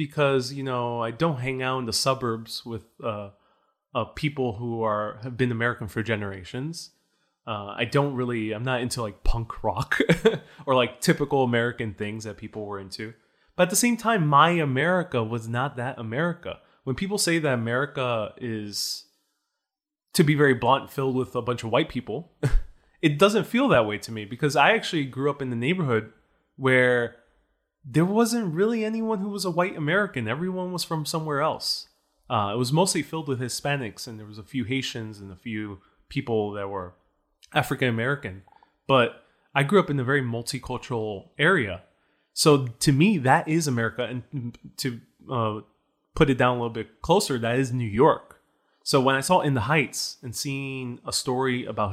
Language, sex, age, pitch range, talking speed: English, male, 20-39, 115-155 Hz, 185 wpm